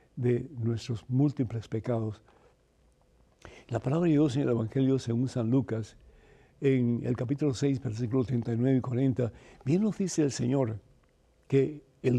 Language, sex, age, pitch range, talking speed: Spanish, male, 60-79, 120-155 Hz, 145 wpm